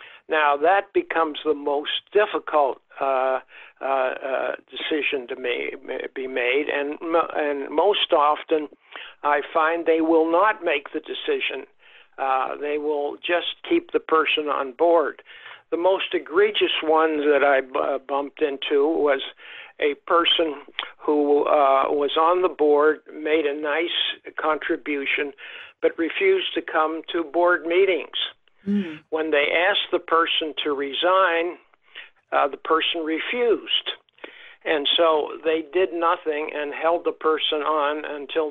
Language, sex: English, male